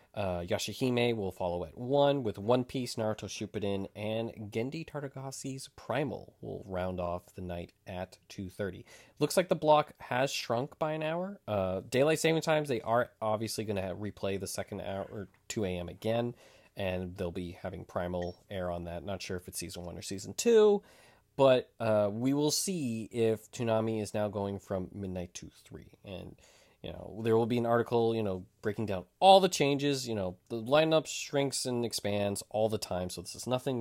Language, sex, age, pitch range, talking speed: English, male, 20-39, 95-130 Hz, 190 wpm